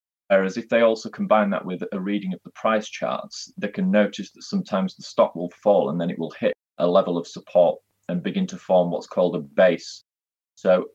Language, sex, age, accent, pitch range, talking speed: English, male, 30-49, British, 85-105 Hz, 220 wpm